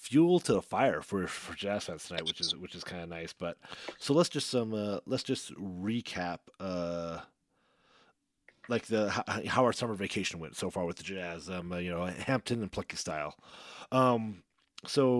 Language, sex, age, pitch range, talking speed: English, male, 30-49, 90-110 Hz, 190 wpm